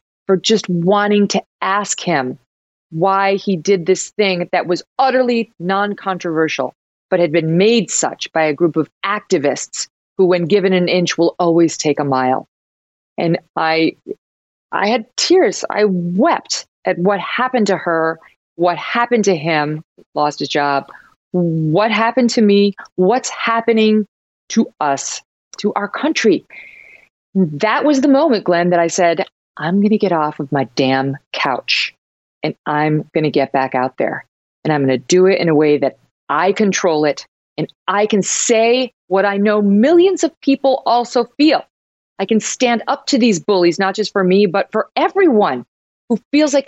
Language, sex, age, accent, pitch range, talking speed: English, female, 40-59, American, 165-230 Hz, 170 wpm